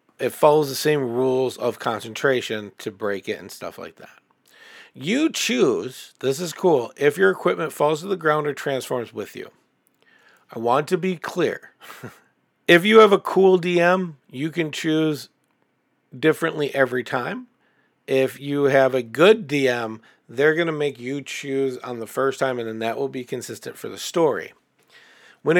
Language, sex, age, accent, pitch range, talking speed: English, male, 50-69, American, 125-165 Hz, 170 wpm